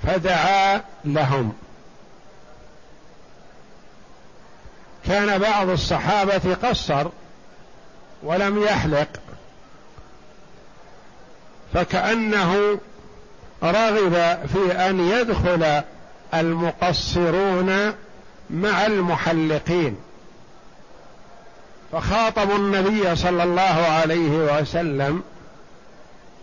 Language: Arabic